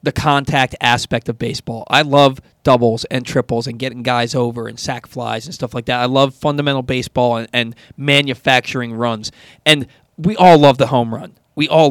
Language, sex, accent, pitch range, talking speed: English, male, American, 125-155 Hz, 190 wpm